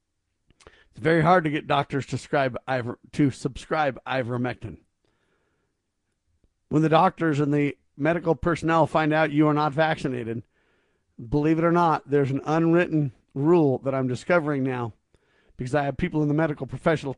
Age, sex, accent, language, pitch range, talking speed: 40-59, male, American, English, 130-165 Hz, 155 wpm